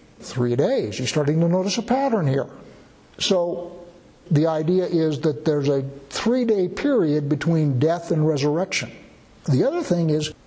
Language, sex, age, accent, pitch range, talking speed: English, male, 60-79, American, 155-200 Hz, 150 wpm